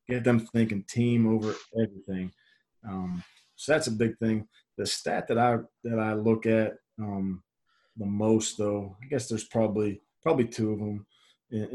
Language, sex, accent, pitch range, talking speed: English, male, American, 100-115 Hz, 170 wpm